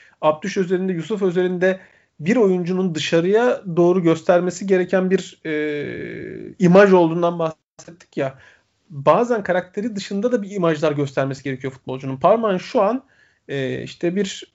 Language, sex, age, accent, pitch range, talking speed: Turkish, male, 40-59, native, 150-185 Hz, 130 wpm